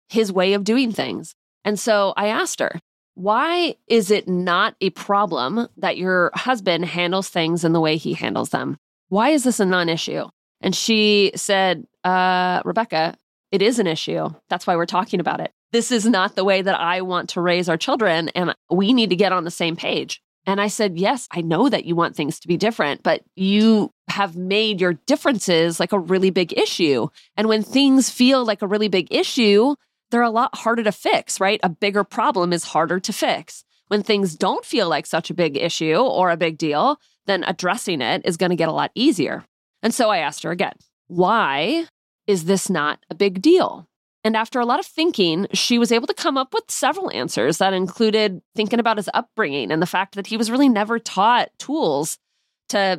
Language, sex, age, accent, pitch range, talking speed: English, female, 30-49, American, 180-230 Hz, 205 wpm